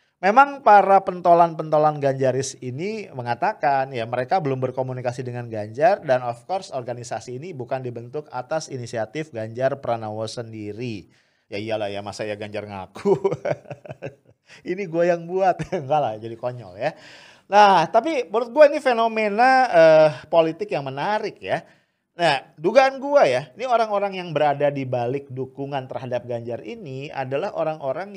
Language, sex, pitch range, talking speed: English, male, 125-190 Hz, 145 wpm